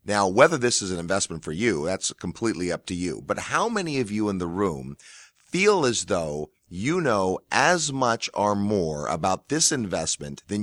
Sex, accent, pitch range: male, American, 95-125 Hz